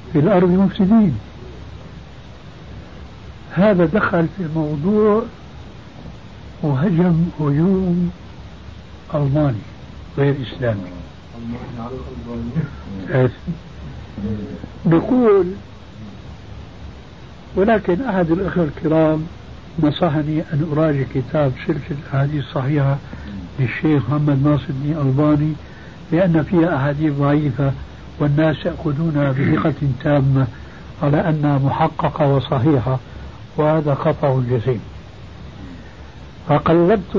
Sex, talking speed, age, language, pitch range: male, 75 wpm, 60-79, Arabic, 130-160 Hz